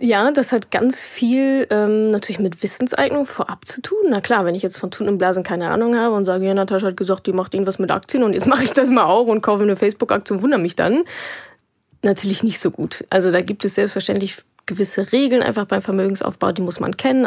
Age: 20-39